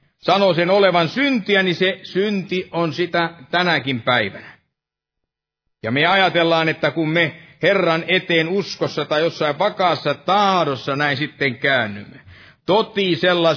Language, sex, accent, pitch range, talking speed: Finnish, male, native, 130-175 Hz, 125 wpm